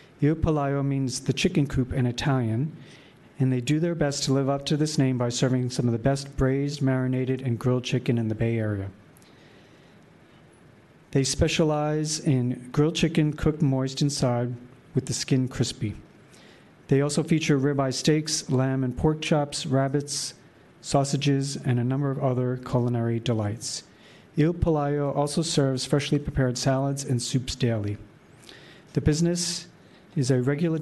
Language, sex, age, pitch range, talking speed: English, male, 40-59, 125-150 Hz, 155 wpm